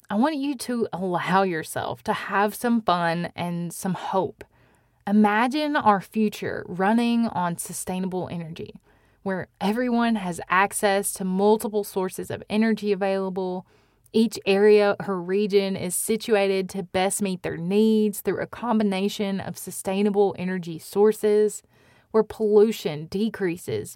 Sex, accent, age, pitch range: female, American, 20-39, 185-220 Hz